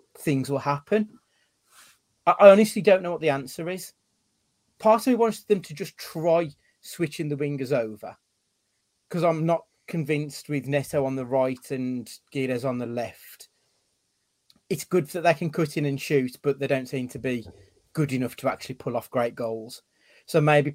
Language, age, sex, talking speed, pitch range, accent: English, 30-49, male, 180 wpm, 125-155 Hz, British